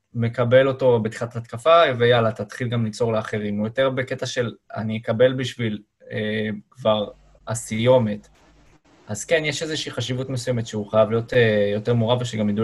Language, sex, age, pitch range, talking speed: Hebrew, male, 20-39, 110-135 Hz, 155 wpm